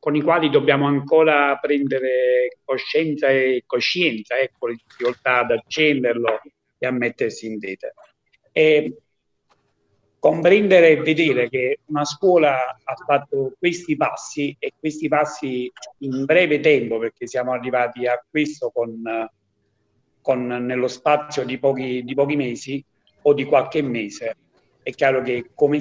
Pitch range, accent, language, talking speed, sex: 125-170 Hz, native, Italian, 135 wpm, male